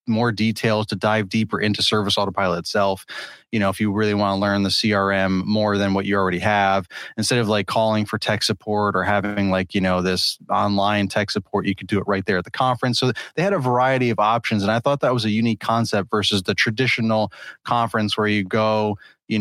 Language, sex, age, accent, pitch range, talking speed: English, male, 20-39, American, 100-115 Hz, 225 wpm